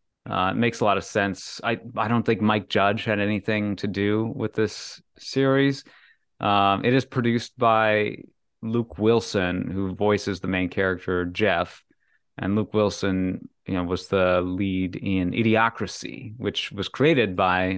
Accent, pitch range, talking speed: American, 90-110 Hz, 160 wpm